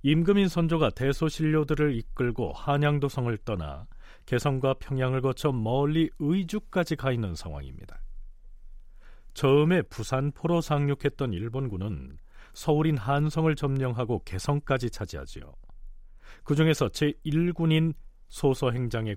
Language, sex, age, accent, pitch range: Korean, male, 40-59, native, 105-155 Hz